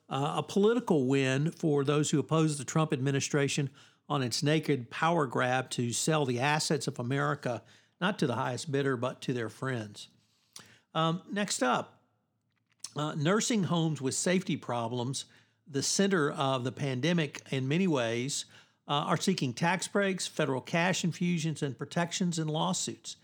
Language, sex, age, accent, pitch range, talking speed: English, male, 50-69, American, 130-165 Hz, 155 wpm